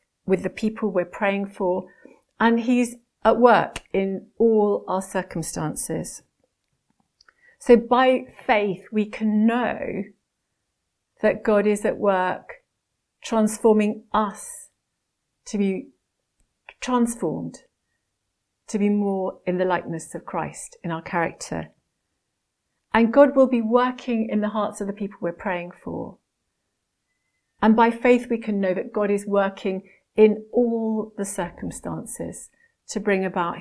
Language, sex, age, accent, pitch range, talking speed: English, female, 50-69, British, 190-225 Hz, 130 wpm